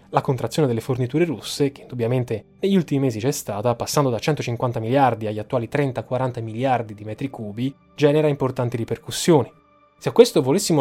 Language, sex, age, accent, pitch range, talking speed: Italian, male, 20-39, native, 115-150 Hz, 165 wpm